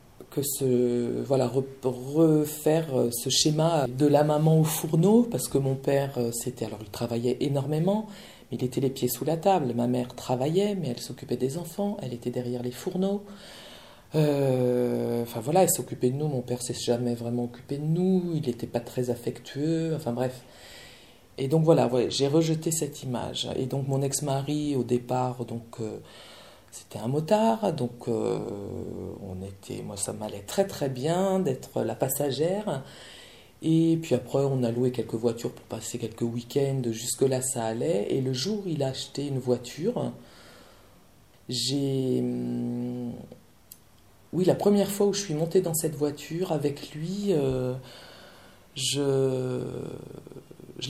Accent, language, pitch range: French, French, 120-160 Hz